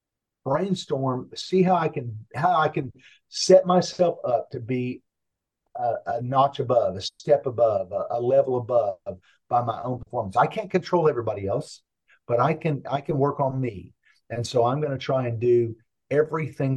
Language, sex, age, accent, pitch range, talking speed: English, male, 50-69, American, 110-135 Hz, 180 wpm